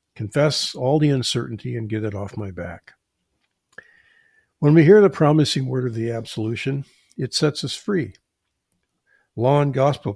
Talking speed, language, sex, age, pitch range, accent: 155 wpm, English, male, 50-69, 115-150 Hz, American